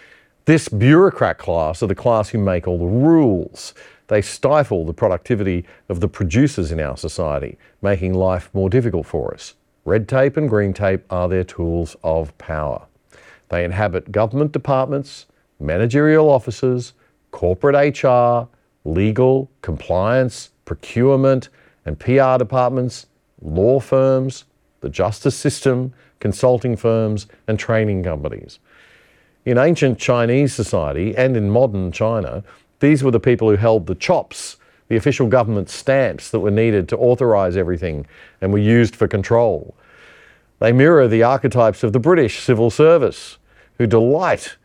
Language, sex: English, male